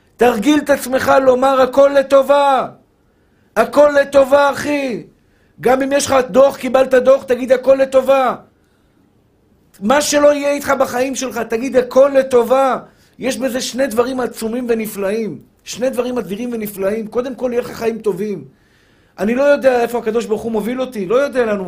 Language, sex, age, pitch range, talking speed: Hebrew, male, 50-69, 185-255 Hz, 160 wpm